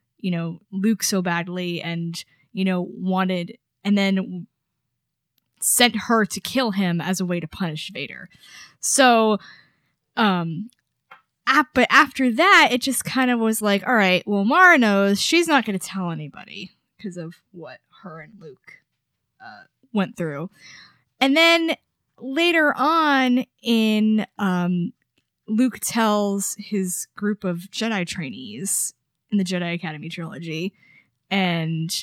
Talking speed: 135 wpm